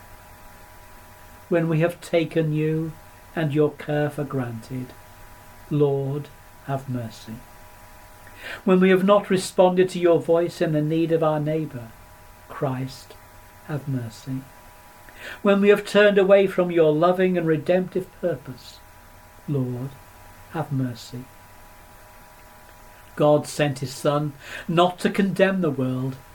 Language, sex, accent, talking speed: English, male, British, 120 wpm